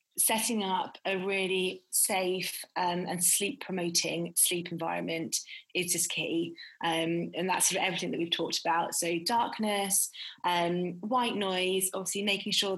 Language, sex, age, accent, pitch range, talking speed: English, female, 20-39, British, 170-190 Hz, 150 wpm